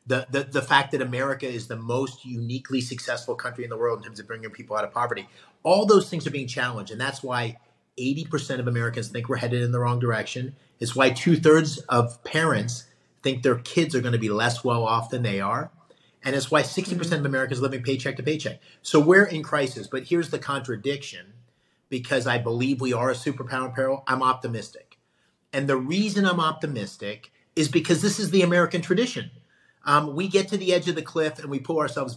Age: 30-49